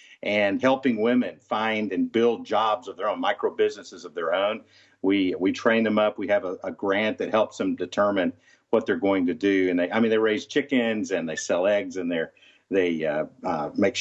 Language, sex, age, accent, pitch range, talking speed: English, male, 50-69, American, 105-140 Hz, 220 wpm